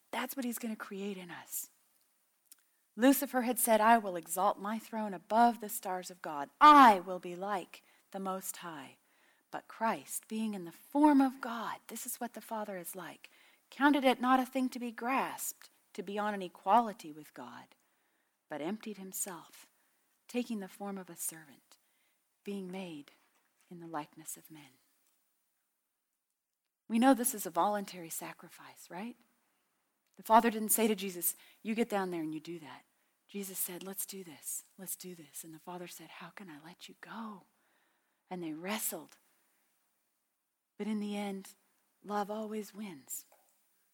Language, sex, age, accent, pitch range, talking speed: English, female, 40-59, American, 180-235 Hz, 170 wpm